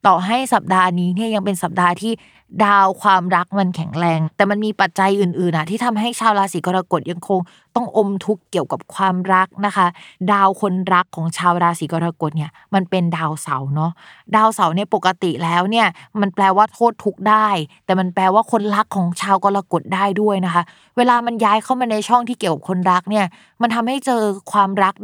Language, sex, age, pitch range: Thai, female, 20-39, 175-215 Hz